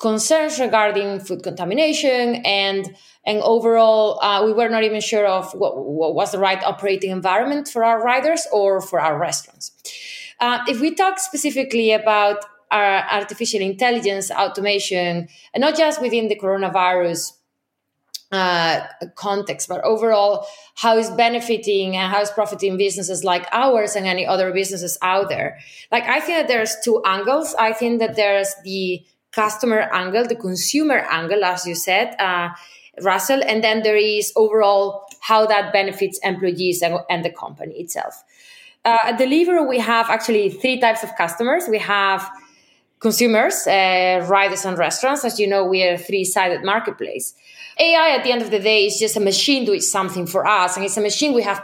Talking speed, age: 170 wpm, 20-39